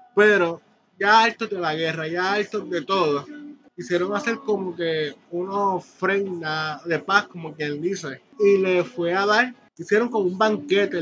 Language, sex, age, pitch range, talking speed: Spanish, male, 20-39, 165-220 Hz, 165 wpm